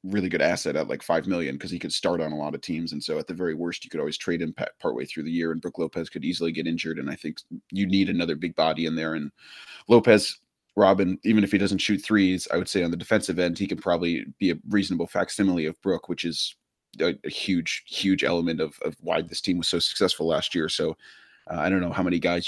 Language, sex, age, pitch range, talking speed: English, male, 30-49, 85-105 Hz, 260 wpm